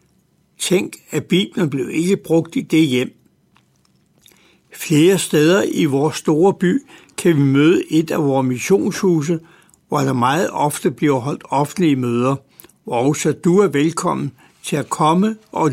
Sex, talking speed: male, 155 wpm